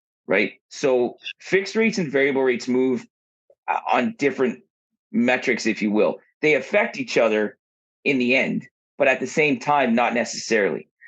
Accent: American